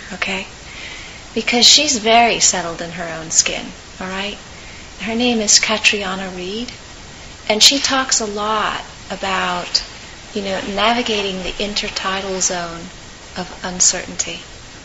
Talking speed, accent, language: 120 wpm, American, English